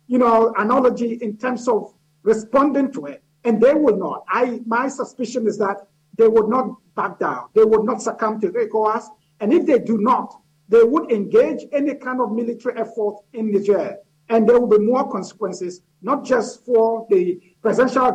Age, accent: 50-69, Nigerian